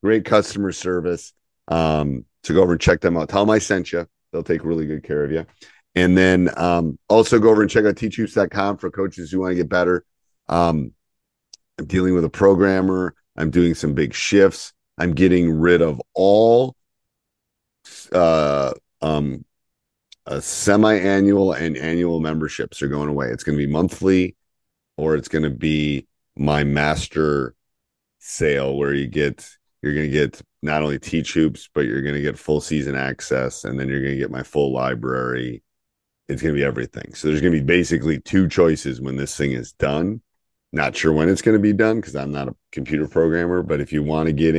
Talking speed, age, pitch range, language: 185 wpm, 40-59, 70-90 Hz, English